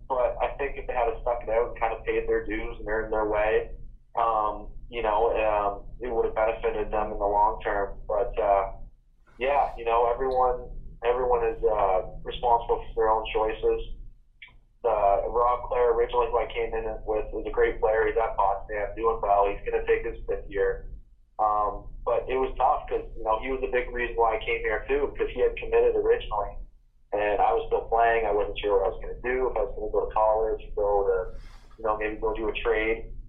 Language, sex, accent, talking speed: English, male, American, 225 wpm